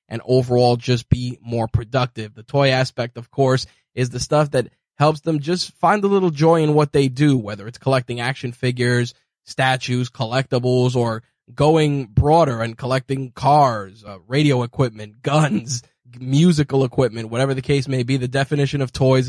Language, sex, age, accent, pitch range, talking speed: English, male, 20-39, American, 120-135 Hz, 170 wpm